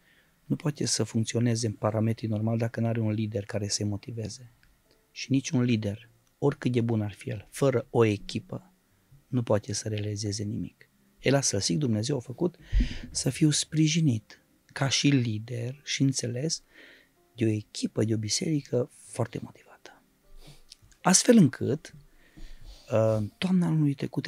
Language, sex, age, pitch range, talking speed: Romanian, male, 30-49, 110-150 Hz, 150 wpm